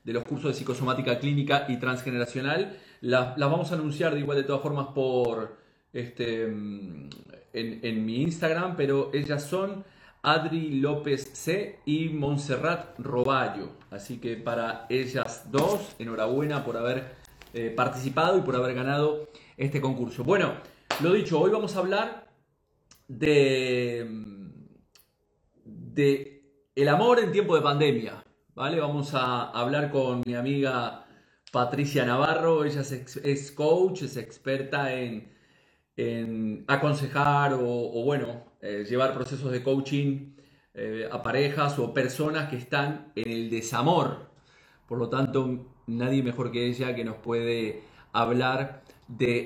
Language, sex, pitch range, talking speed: Spanish, male, 120-145 Hz, 135 wpm